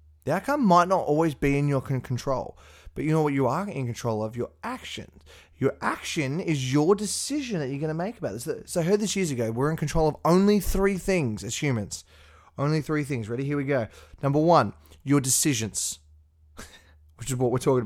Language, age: English, 20-39